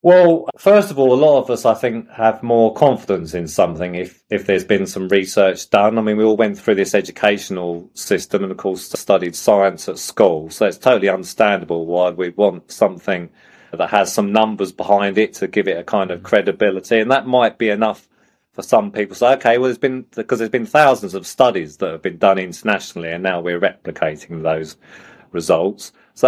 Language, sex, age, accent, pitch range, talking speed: English, male, 30-49, British, 95-115 Hz, 210 wpm